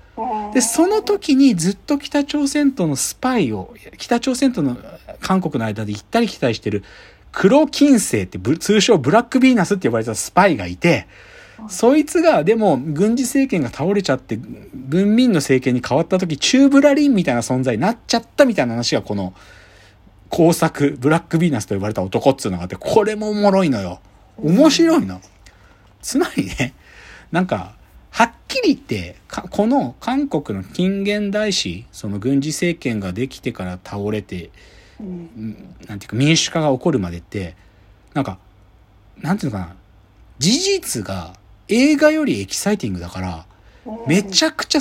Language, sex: Japanese, male